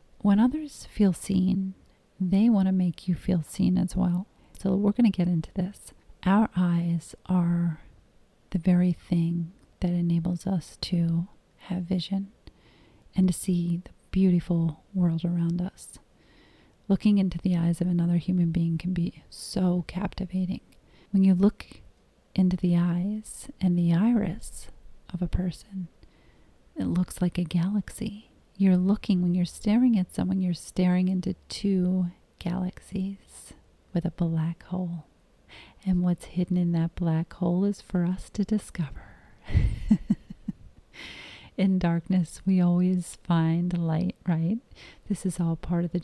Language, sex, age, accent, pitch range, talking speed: English, female, 40-59, American, 170-190 Hz, 145 wpm